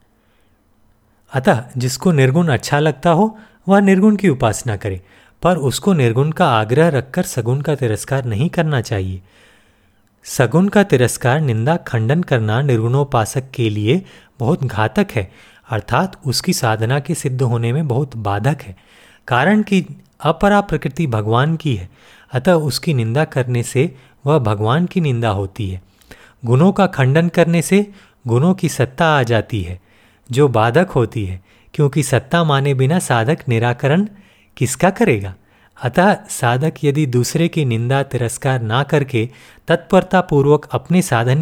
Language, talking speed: Hindi, 145 wpm